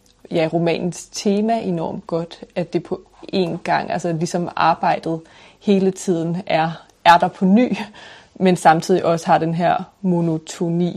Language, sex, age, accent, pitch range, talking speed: Danish, female, 30-49, native, 165-180 Hz, 155 wpm